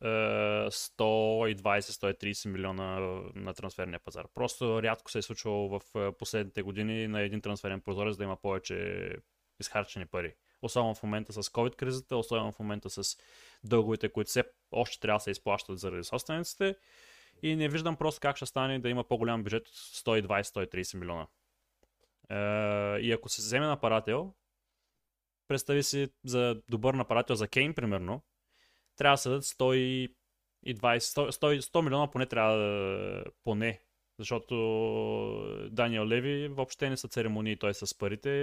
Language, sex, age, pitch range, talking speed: Bulgarian, male, 20-39, 105-130 Hz, 145 wpm